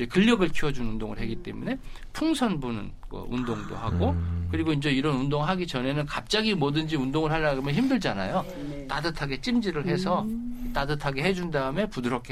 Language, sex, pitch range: Korean, male, 130-210 Hz